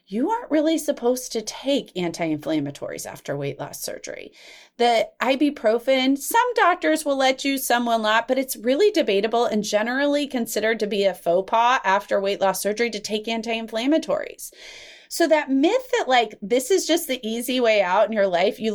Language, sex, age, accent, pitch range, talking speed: English, female, 30-49, American, 195-290 Hz, 180 wpm